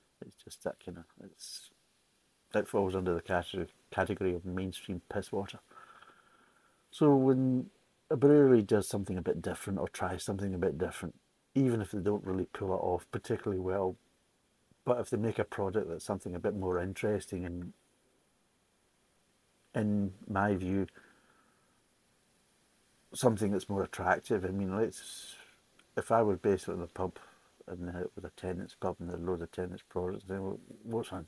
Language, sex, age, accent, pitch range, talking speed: English, male, 60-79, British, 90-115 Hz, 165 wpm